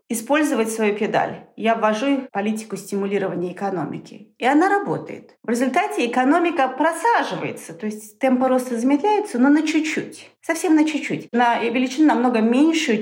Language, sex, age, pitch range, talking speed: Russian, female, 40-59, 215-280 Hz, 140 wpm